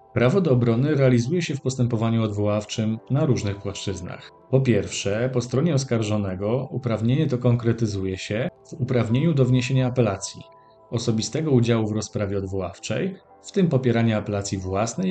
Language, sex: Polish, male